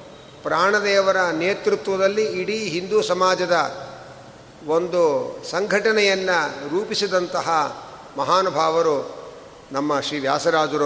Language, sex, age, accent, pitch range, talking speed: Kannada, male, 50-69, native, 170-210 Hz, 65 wpm